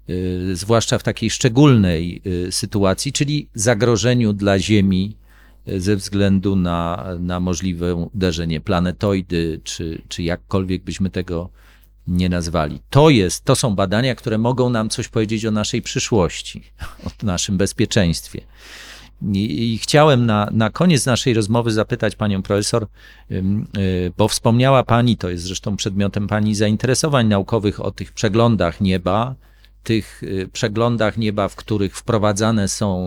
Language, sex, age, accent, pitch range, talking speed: Polish, male, 40-59, native, 95-120 Hz, 125 wpm